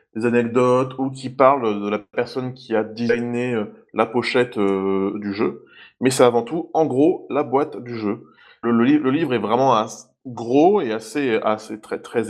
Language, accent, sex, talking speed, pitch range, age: French, French, male, 185 wpm, 110-140 Hz, 20-39